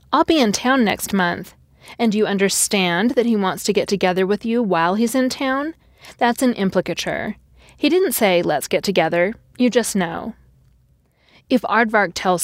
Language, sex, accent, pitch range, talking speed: English, female, American, 185-245 Hz, 175 wpm